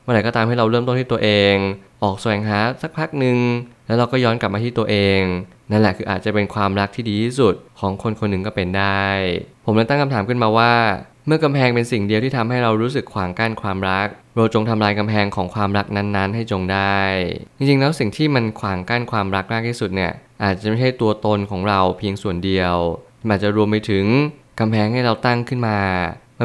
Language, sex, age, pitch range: Thai, male, 20-39, 100-120 Hz